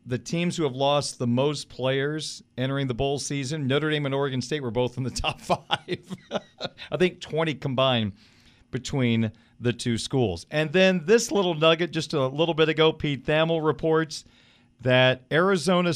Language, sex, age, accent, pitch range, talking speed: English, male, 40-59, American, 125-175 Hz, 175 wpm